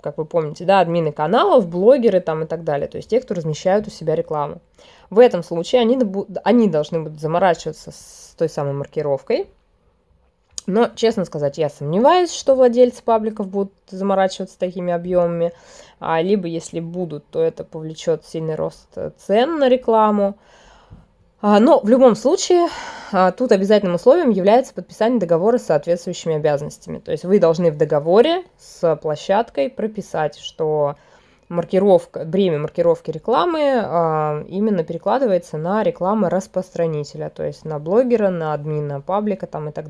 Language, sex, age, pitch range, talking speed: Russian, female, 20-39, 160-225 Hz, 140 wpm